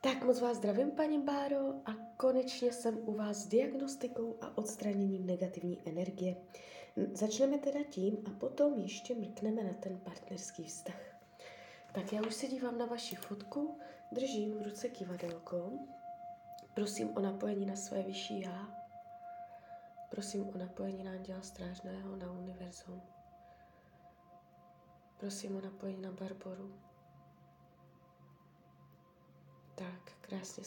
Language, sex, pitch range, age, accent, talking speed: Czech, female, 175-215 Hz, 20-39, native, 120 wpm